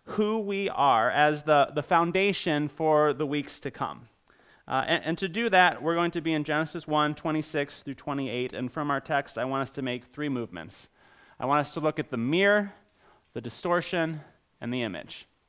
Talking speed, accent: 200 wpm, American